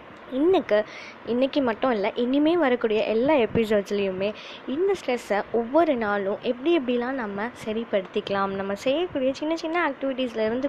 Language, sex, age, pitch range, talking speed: Tamil, female, 20-39, 215-275 Hz, 125 wpm